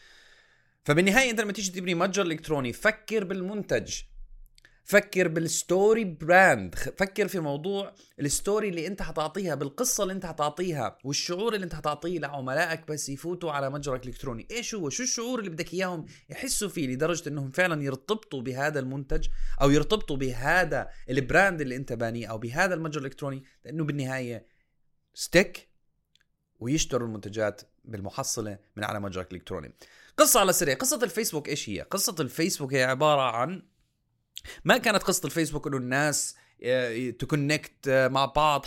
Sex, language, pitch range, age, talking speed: male, Arabic, 130-185 Hz, 30-49, 140 wpm